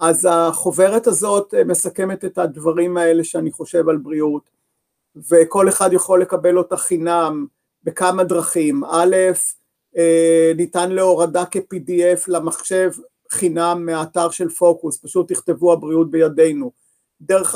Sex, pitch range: male, 160-190 Hz